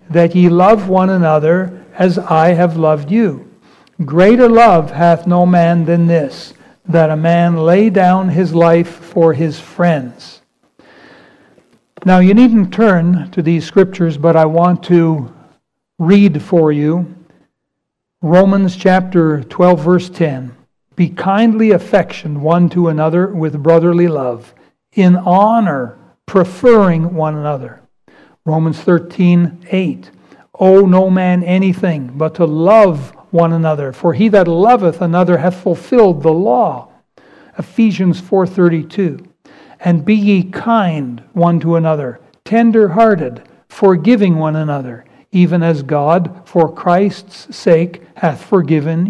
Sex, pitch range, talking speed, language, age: male, 165-190 Hz, 125 wpm, English, 60-79